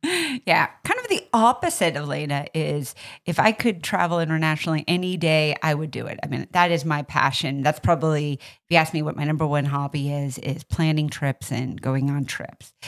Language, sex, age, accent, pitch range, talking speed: English, female, 40-59, American, 145-190 Hz, 200 wpm